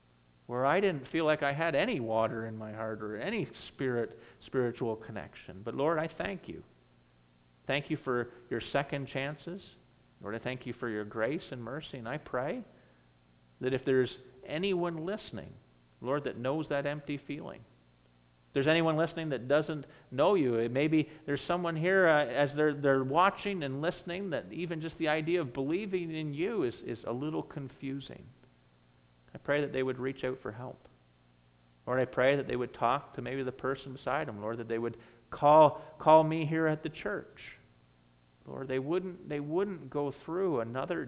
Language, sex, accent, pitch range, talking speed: English, male, American, 105-150 Hz, 185 wpm